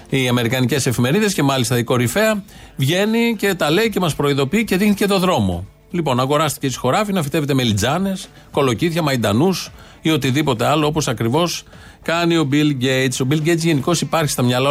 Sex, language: male, Greek